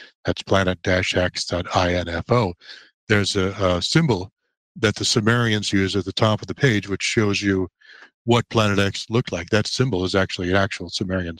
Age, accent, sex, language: 60-79, American, male, English